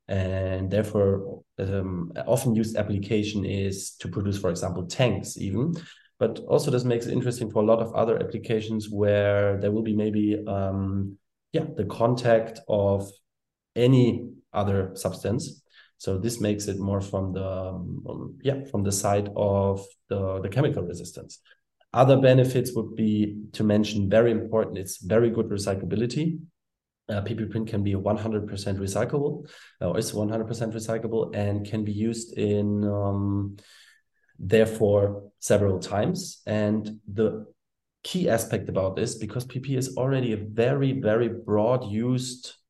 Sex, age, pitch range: male, 20-39, 100-115 Hz